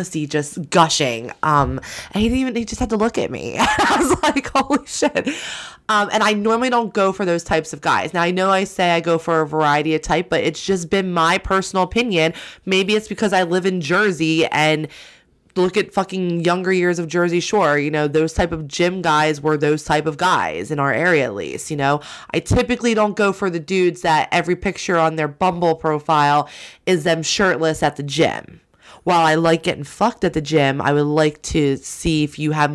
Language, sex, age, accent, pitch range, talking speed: English, female, 20-39, American, 155-195 Hz, 220 wpm